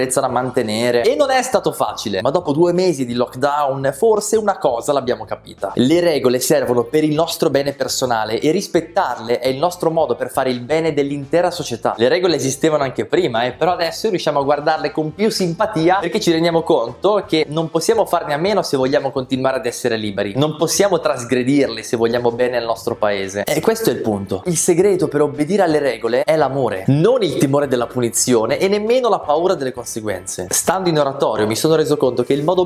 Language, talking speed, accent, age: Italian, 205 wpm, native, 20-39